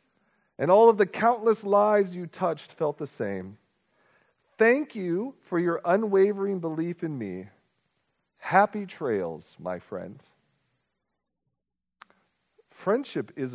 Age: 40-59